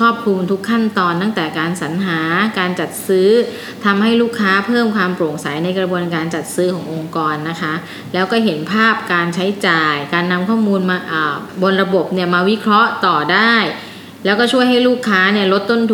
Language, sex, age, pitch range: Thai, female, 20-39, 170-210 Hz